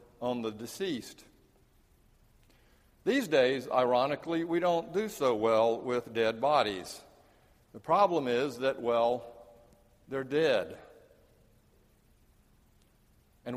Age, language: 60-79, English